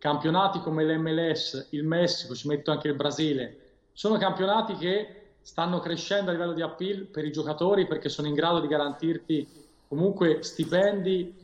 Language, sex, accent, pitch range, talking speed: Italian, male, native, 150-170 Hz, 155 wpm